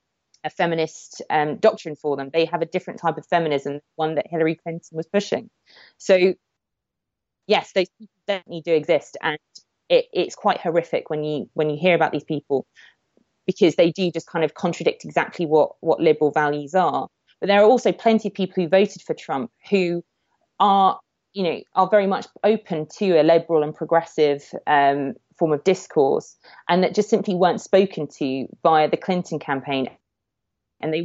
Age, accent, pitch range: 20-39, British, 150-185 Hz